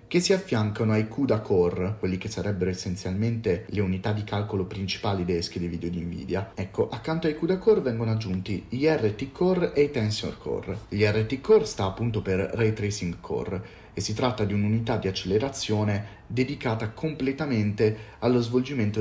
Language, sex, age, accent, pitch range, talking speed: Italian, male, 30-49, native, 95-125 Hz, 170 wpm